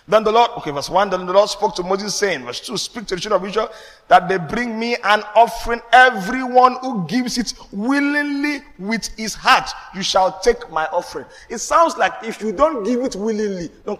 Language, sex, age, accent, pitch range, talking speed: English, male, 30-49, Nigerian, 195-260 Hz, 215 wpm